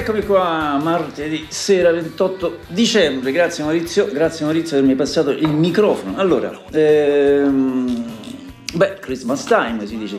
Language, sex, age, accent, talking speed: Italian, male, 50-69, native, 130 wpm